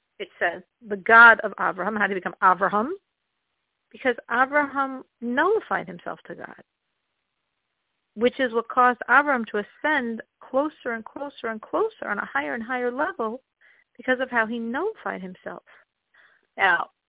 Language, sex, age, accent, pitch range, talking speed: English, female, 40-59, American, 210-285 Hz, 145 wpm